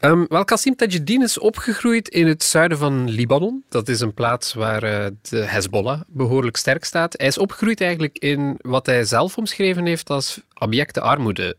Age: 30-49